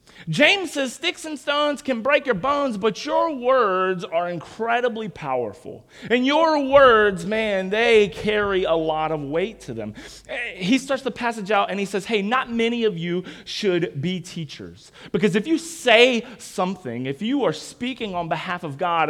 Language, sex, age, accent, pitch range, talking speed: English, male, 30-49, American, 160-235 Hz, 175 wpm